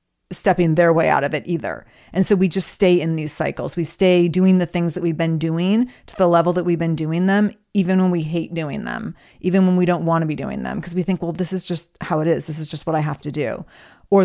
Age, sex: 30-49, female